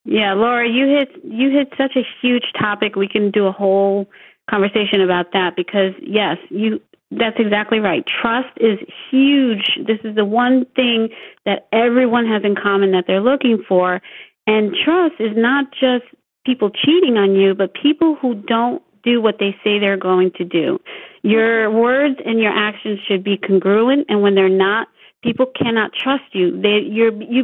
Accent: American